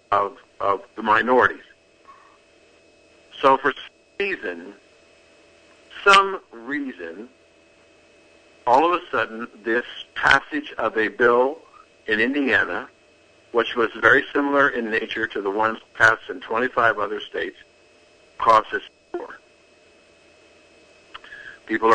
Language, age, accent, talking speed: English, 60-79, American, 105 wpm